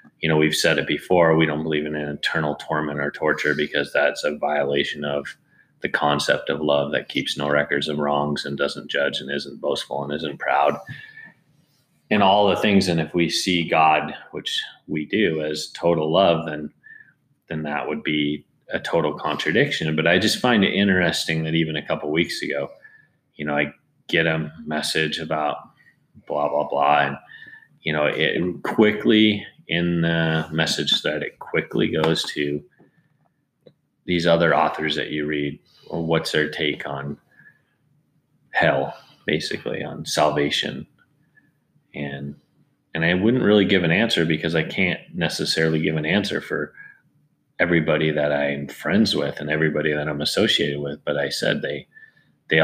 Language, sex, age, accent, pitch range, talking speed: English, male, 30-49, American, 75-80 Hz, 165 wpm